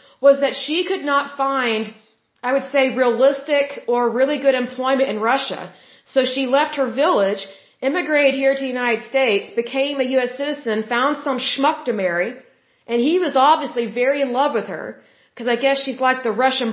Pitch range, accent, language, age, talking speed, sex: 225-275 Hz, American, German, 30-49, 185 wpm, female